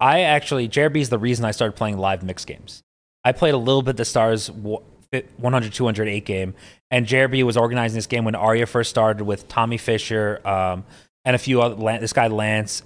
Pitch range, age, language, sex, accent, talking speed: 105-130 Hz, 30-49, English, male, American, 210 wpm